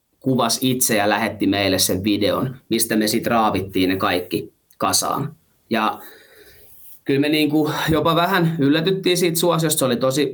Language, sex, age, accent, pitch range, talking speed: Finnish, male, 30-49, native, 105-140 Hz, 150 wpm